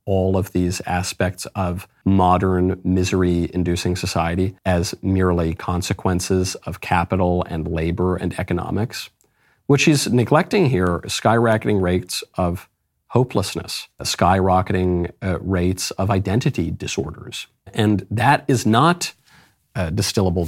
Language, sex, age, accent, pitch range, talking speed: English, male, 40-59, American, 90-105 Hz, 105 wpm